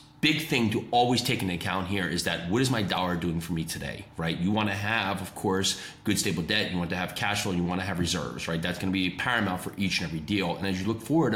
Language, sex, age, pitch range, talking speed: English, male, 30-49, 95-125 Hz, 290 wpm